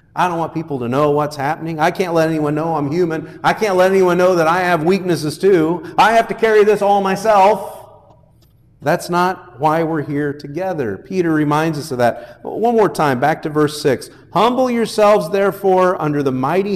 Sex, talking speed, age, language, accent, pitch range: male, 200 wpm, 50-69, English, American, 135-200 Hz